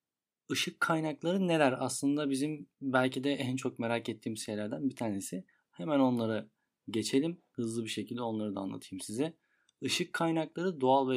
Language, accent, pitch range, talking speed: Turkish, native, 115-140 Hz, 150 wpm